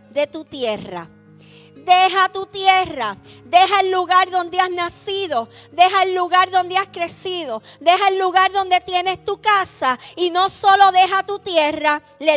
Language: Spanish